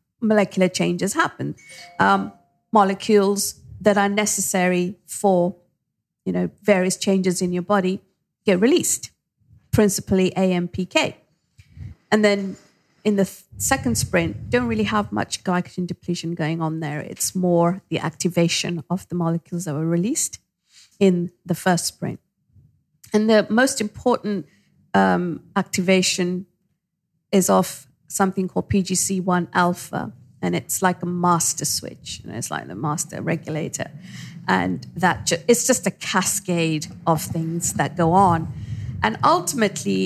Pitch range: 165-205 Hz